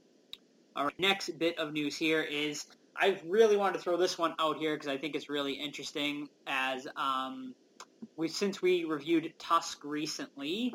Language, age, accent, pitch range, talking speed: English, 20-39, American, 140-195 Hz, 165 wpm